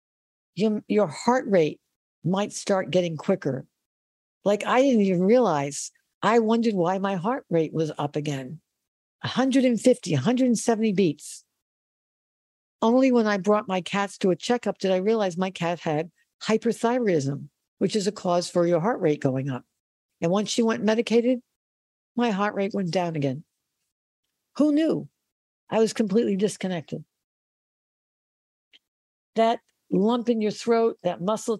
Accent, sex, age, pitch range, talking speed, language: American, female, 60-79, 175-230 Hz, 140 wpm, English